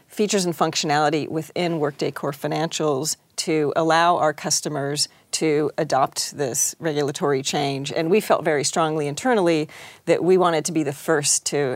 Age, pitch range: 40-59, 145-165 Hz